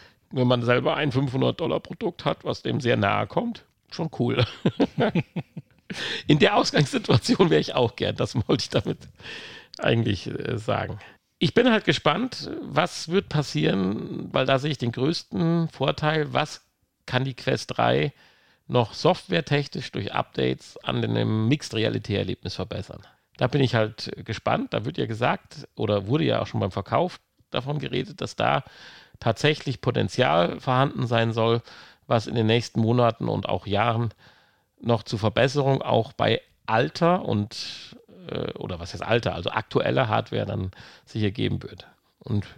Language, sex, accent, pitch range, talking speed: German, male, German, 105-135 Hz, 150 wpm